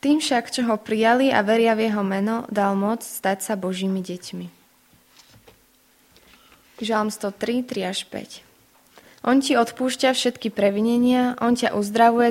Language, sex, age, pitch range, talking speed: Slovak, female, 20-39, 195-235 Hz, 140 wpm